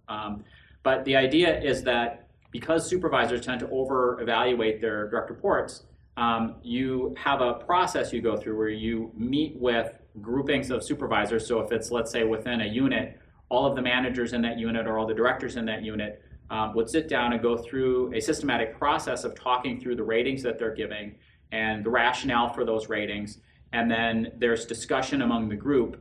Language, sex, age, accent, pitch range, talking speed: English, male, 30-49, American, 110-125 Hz, 190 wpm